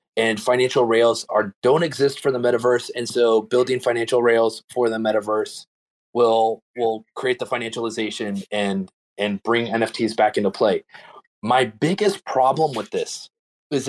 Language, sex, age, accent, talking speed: English, male, 30-49, American, 150 wpm